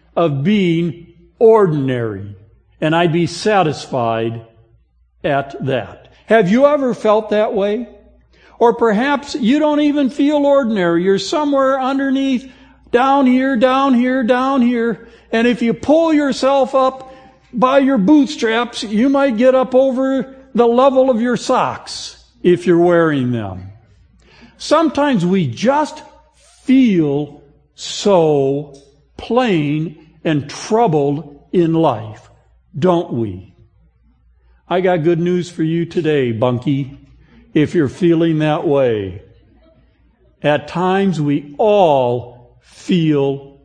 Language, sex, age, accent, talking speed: English, male, 60-79, American, 115 wpm